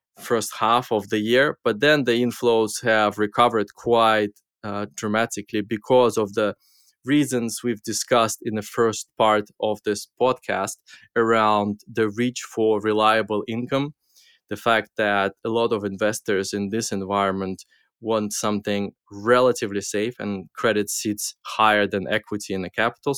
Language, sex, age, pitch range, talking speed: English, male, 20-39, 100-115 Hz, 145 wpm